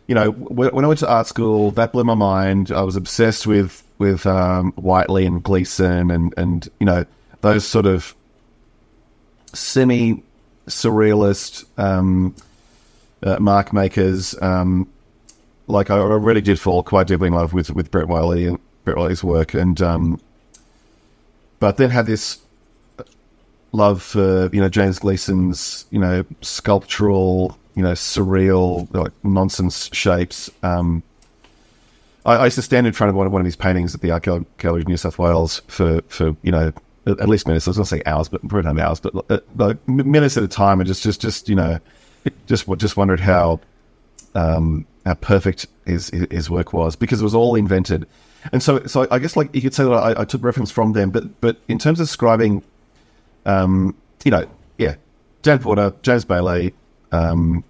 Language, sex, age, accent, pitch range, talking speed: English, male, 30-49, Australian, 90-110 Hz, 180 wpm